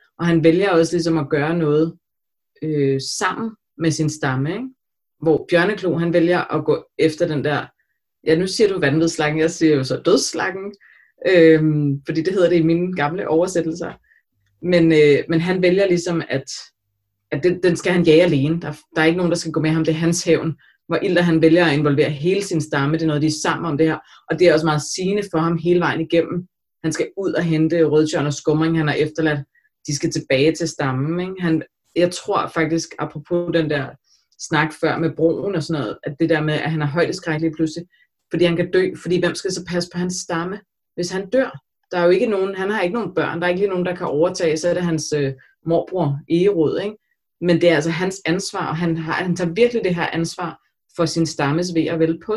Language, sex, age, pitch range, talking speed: Danish, female, 30-49, 155-175 Hz, 230 wpm